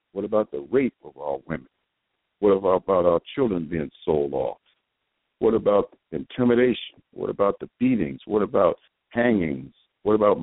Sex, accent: male, American